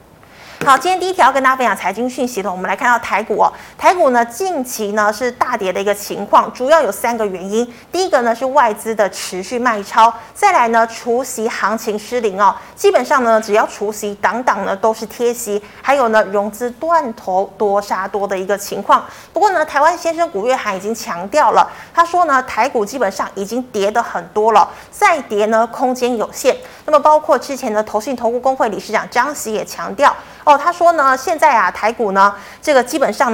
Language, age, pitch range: Chinese, 30-49, 210-275 Hz